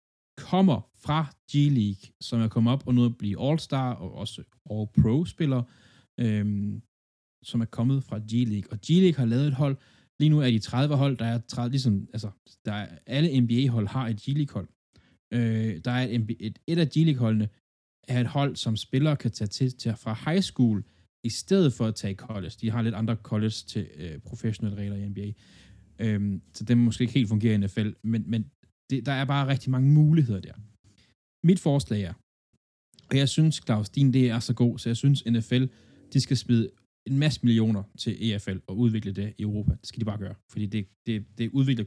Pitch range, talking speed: 105-135 Hz, 200 wpm